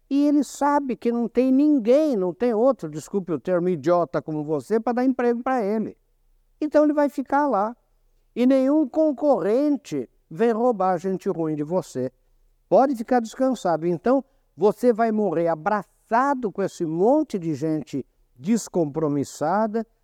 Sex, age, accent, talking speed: male, 60-79, Brazilian, 145 wpm